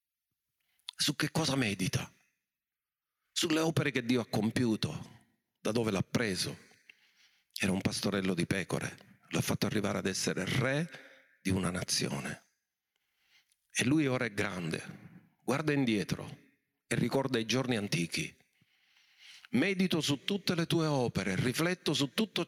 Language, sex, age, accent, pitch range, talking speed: Italian, male, 50-69, native, 105-155 Hz, 130 wpm